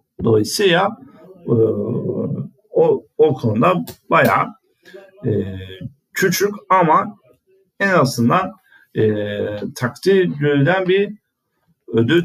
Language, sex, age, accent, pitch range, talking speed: Turkish, male, 50-69, native, 135-210 Hz, 80 wpm